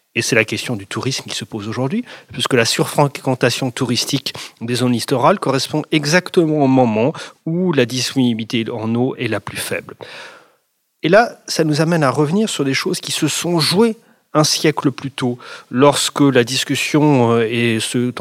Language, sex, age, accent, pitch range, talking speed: French, male, 30-49, French, 115-140 Hz, 170 wpm